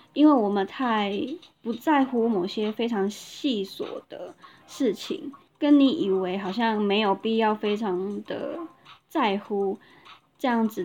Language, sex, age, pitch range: Chinese, female, 10-29, 205-280 Hz